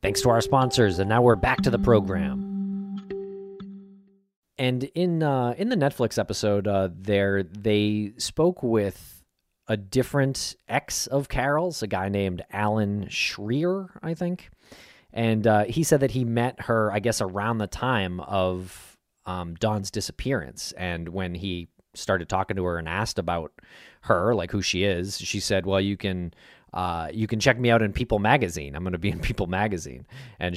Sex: male